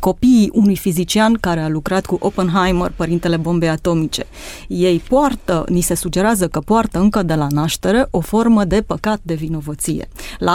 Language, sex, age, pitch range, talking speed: Romanian, female, 30-49, 175-225 Hz, 165 wpm